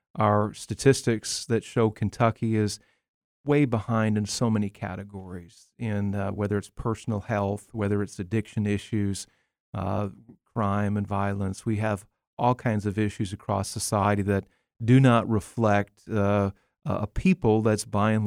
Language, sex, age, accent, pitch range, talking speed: English, male, 40-59, American, 100-120 Hz, 145 wpm